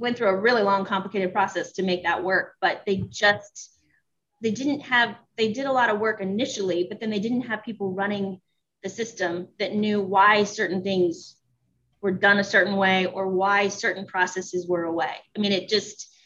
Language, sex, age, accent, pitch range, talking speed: English, female, 20-39, American, 180-215 Hz, 195 wpm